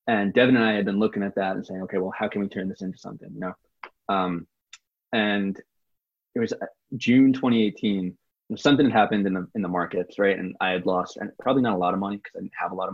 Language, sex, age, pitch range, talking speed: English, male, 20-39, 95-110 Hz, 255 wpm